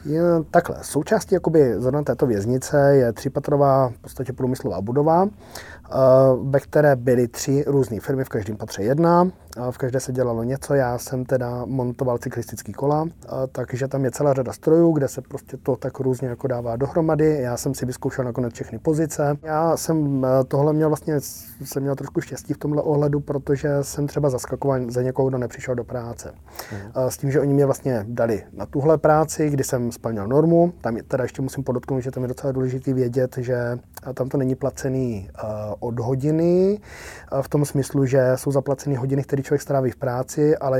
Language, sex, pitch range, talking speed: Czech, male, 125-145 Hz, 180 wpm